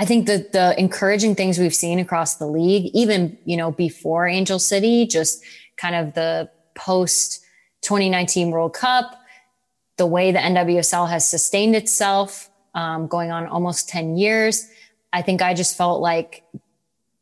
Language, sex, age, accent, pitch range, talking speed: English, female, 20-39, American, 165-200 Hz, 150 wpm